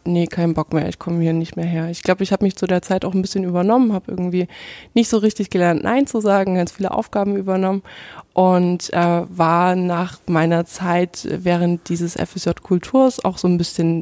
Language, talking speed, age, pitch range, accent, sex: German, 210 wpm, 20-39, 180-205 Hz, German, female